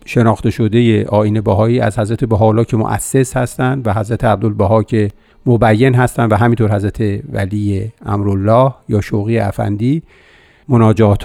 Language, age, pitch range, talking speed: Persian, 50-69, 110-130 Hz, 140 wpm